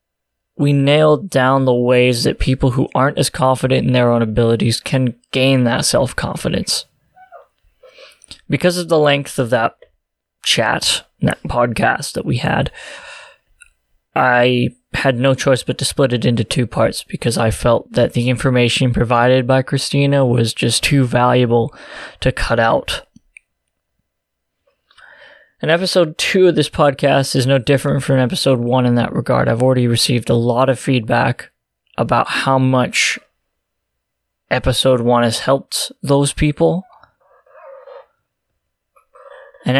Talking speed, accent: 135 wpm, American